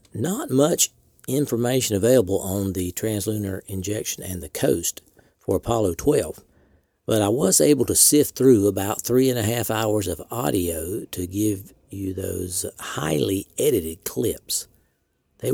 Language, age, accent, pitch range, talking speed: English, 50-69, American, 95-115 Hz, 145 wpm